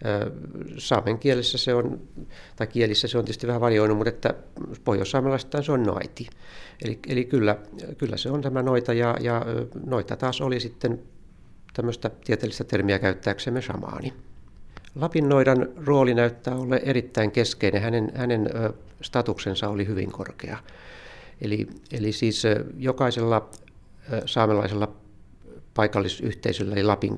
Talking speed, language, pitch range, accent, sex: 125 wpm, Finnish, 100-125 Hz, native, male